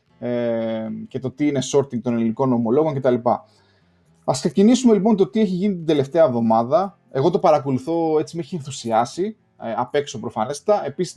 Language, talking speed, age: Greek, 170 wpm, 20-39